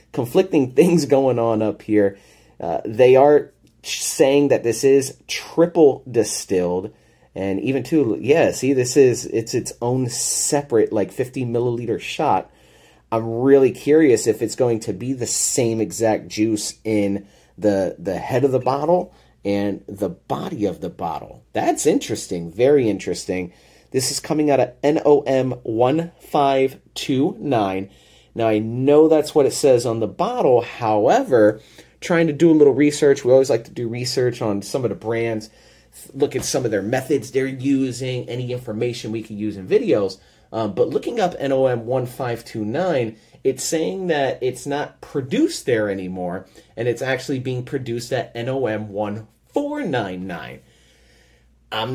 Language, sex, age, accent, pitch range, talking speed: English, male, 30-49, American, 110-145 Hz, 150 wpm